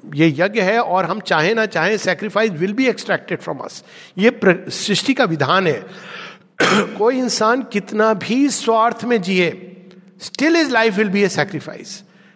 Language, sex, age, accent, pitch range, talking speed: Hindi, male, 50-69, native, 160-225 Hz, 155 wpm